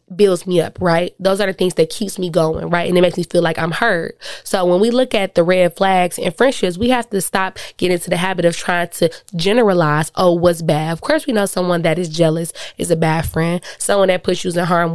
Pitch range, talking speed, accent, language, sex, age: 170-195 Hz, 255 wpm, American, English, female, 20-39